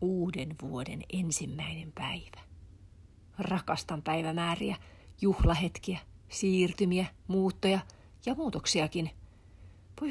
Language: Finnish